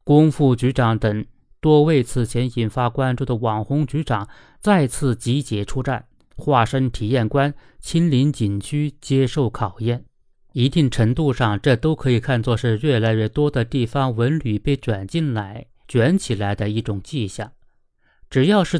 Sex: male